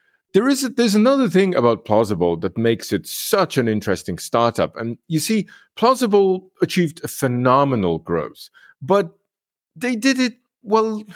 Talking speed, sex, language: 150 wpm, male, English